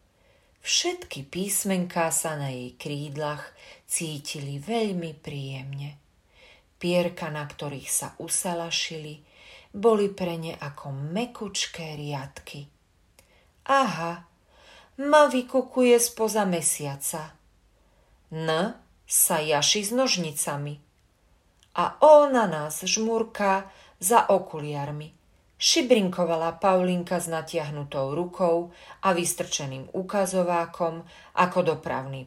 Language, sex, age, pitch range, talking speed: Slovak, female, 40-59, 145-190 Hz, 85 wpm